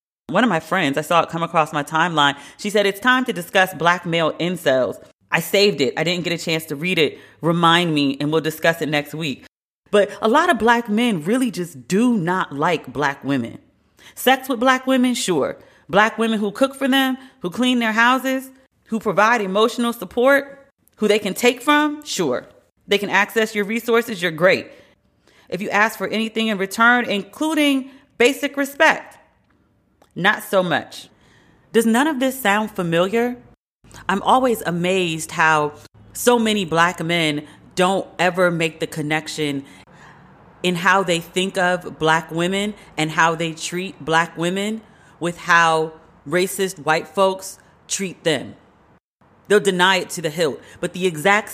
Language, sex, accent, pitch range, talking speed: English, female, American, 160-220 Hz, 170 wpm